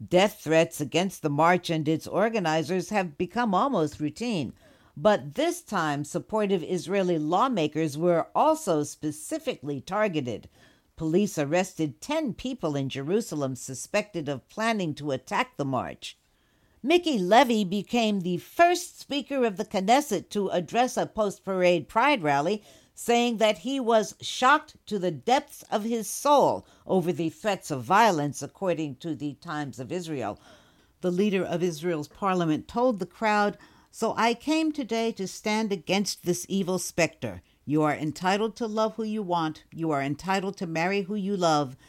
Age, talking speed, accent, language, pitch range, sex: 60-79, 150 wpm, American, English, 155-220 Hz, female